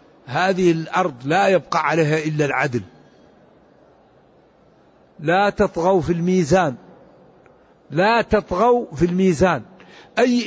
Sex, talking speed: male, 90 wpm